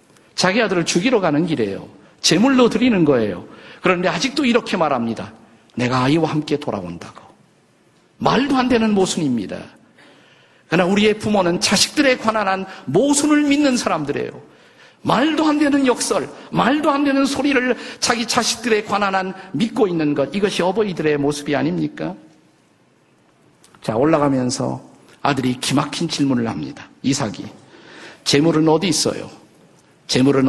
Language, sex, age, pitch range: Korean, male, 50-69, 140-225 Hz